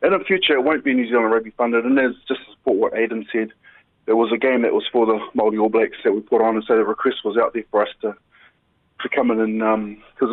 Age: 20-39